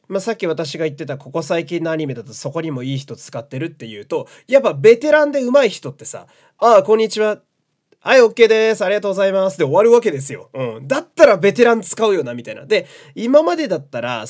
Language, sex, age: Japanese, male, 20-39